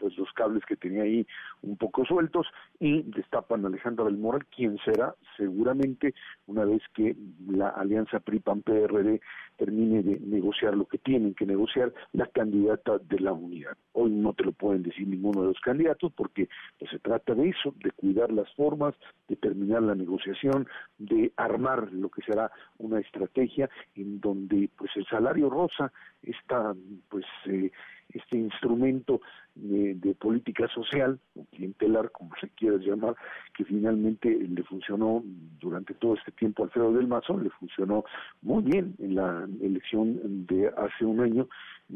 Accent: Mexican